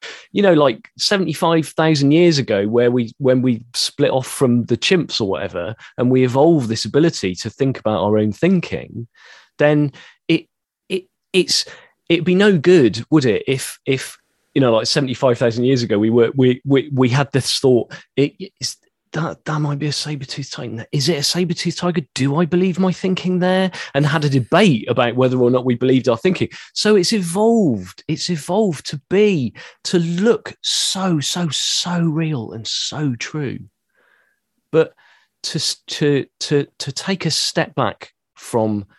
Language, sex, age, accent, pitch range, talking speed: English, male, 30-49, British, 125-175 Hz, 170 wpm